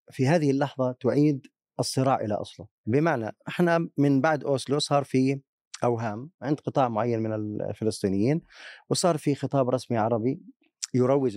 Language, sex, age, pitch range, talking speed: Arabic, male, 30-49, 110-160 Hz, 135 wpm